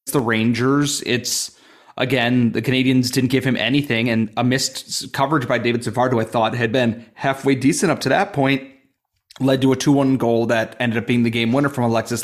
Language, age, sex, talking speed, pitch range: English, 30-49, male, 200 wpm, 115-135 Hz